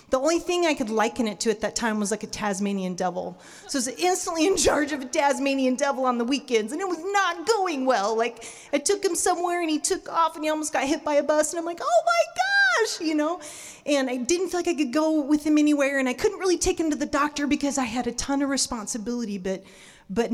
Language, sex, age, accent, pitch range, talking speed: English, female, 30-49, American, 235-320 Hz, 265 wpm